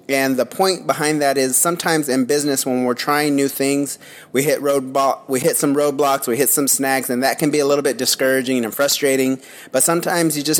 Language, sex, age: English, male, 30-49